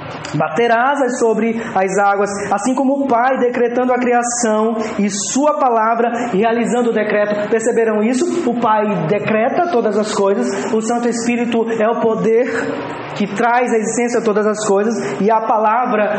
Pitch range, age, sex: 200-245 Hz, 20-39, male